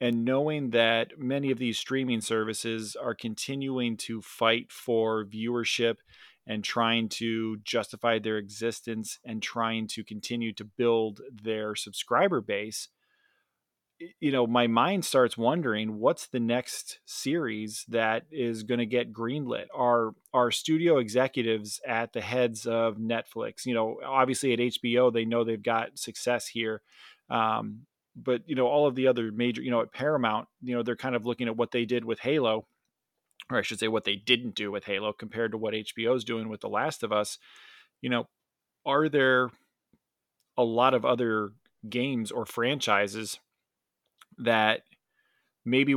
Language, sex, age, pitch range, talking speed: English, male, 30-49, 110-125 Hz, 160 wpm